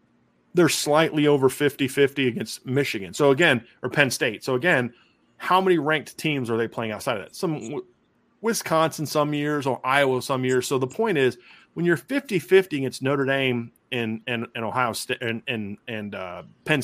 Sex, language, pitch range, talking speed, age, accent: male, English, 120-145 Hz, 190 wpm, 30-49, American